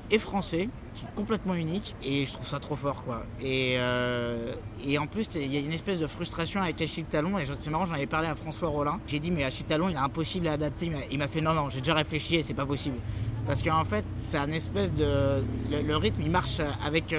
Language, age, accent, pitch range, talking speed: French, 20-39, French, 140-170 Hz, 270 wpm